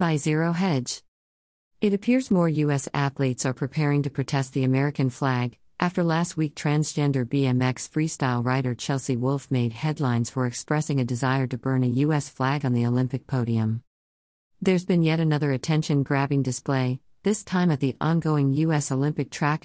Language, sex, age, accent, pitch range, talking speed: English, female, 50-69, American, 130-160 Hz, 160 wpm